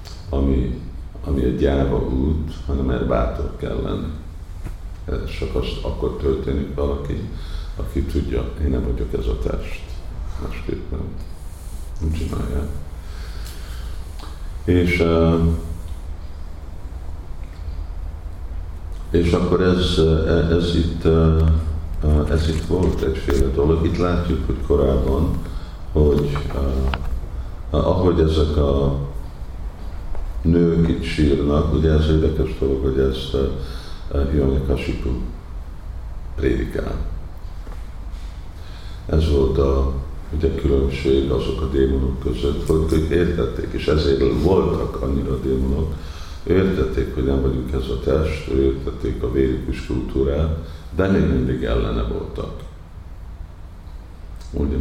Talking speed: 95 wpm